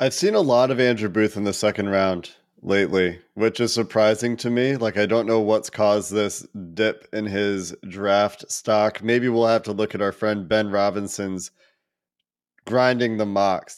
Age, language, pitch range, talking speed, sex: 20-39, English, 105-135 Hz, 185 wpm, male